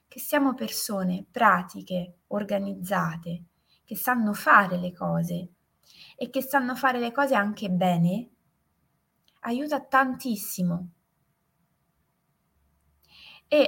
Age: 20-39